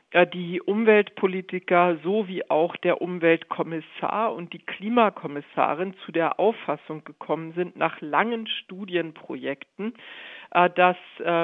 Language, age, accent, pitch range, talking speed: German, 50-69, German, 165-200 Hz, 95 wpm